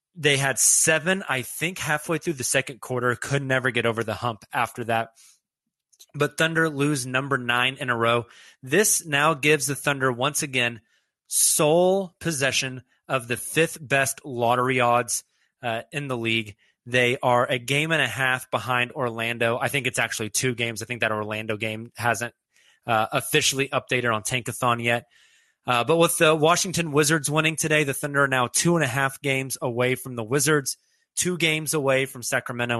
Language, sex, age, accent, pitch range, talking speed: English, male, 20-39, American, 120-145 Hz, 180 wpm